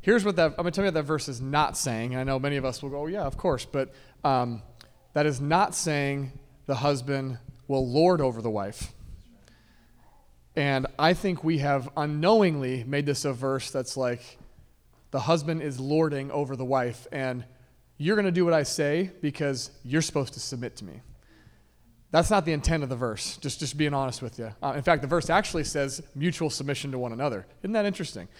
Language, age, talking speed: English, 30-49, 205 wpm